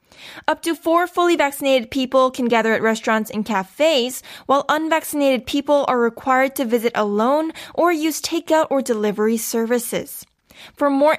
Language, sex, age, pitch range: Korean, female, 10-29, 240-300 Hz